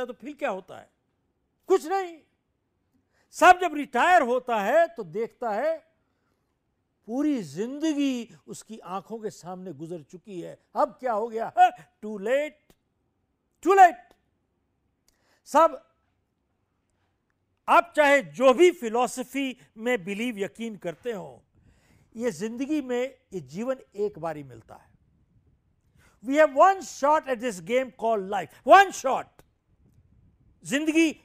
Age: 60-79